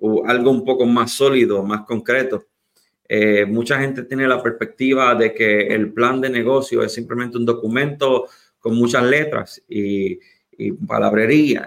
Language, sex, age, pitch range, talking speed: English, male, 30-49, 110-135 Hz, 155 wpm